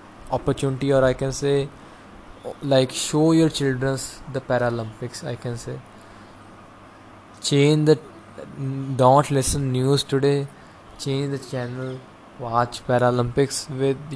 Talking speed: 110 wpm